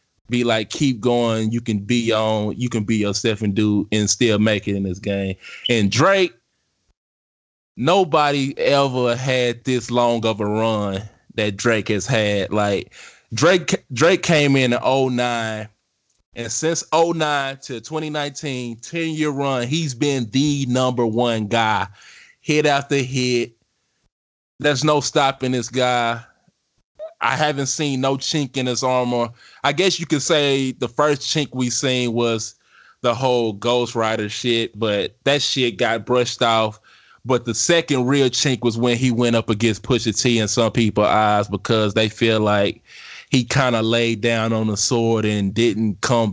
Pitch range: 110-135 Hz